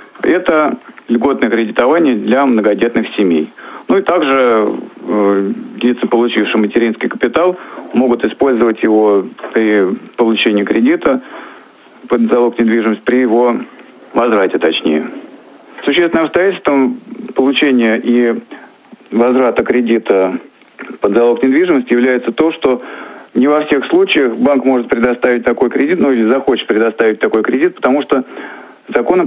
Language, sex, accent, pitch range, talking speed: Russian, male, native, 115-135 Hz, 120 wpm